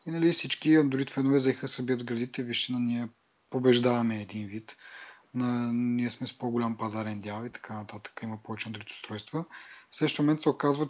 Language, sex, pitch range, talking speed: Bulgarian, male, 125-155 Hz, 165 wpm